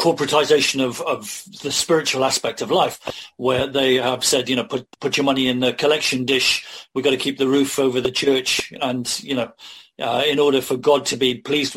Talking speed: 215 wpm